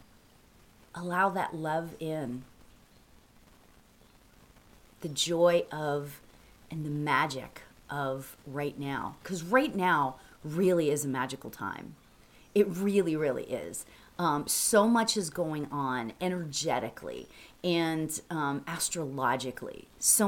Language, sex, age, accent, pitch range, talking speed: English, female, 40-59, American, 135-180 Hz, 105 wpm